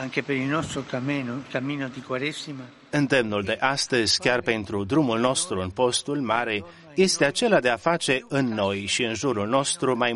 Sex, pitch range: male, 115-150 Hz